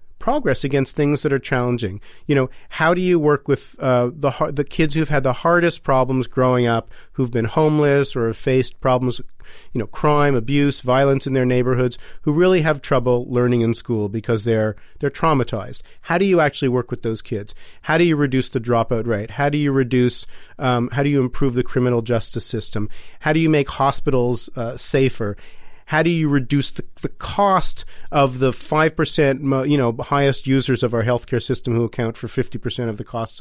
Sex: male